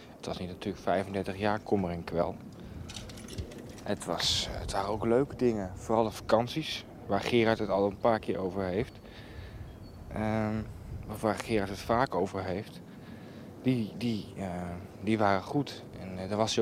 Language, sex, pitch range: Dutch, male, 95-115 Hz